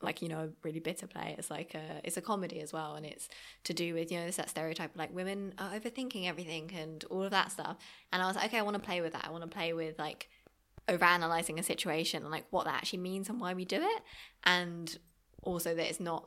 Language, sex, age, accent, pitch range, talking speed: English, female, 20-39, British, 165-185 Hz, 260 wpm